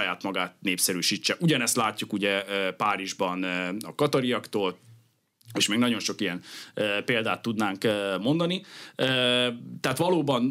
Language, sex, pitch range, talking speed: Hungarian, male, 100-130 Hz, 110 wpm